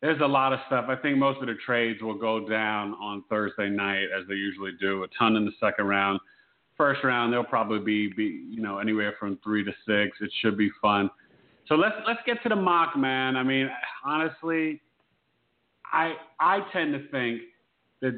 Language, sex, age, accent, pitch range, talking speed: English, male, 40-59, American, 110-135 Hz, 200 wpm